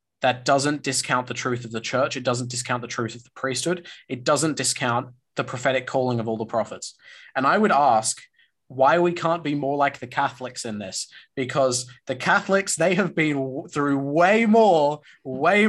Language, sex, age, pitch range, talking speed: English, male, 20-39, 125-160 Hz, 190 wpm